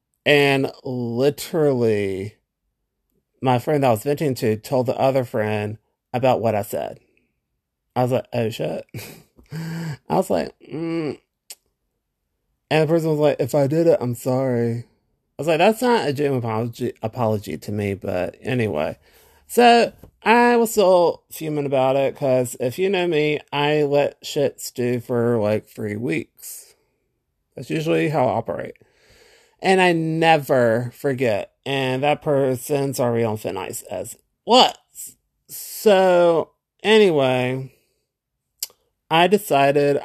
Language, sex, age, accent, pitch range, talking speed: English, male, 30-49, American, 120-160 Hz, 135 wpm